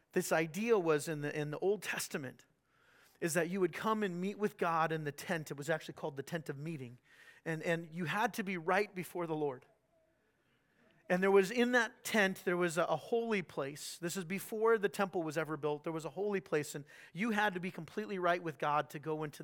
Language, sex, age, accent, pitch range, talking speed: English, male, 40-59, American, 155-195 Hz, 235 wpm